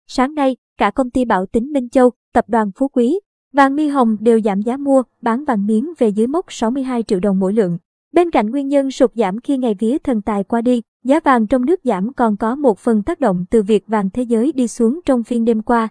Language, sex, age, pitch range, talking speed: Vietnamese, male, 20-39, 220-265 Hz, 250 wpm